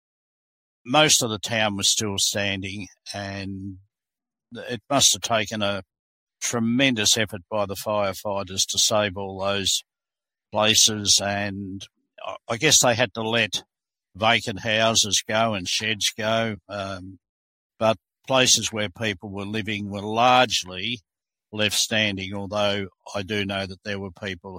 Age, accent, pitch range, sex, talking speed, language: 60-79, Australian, 95-110 Hz, male, 135 wpm, English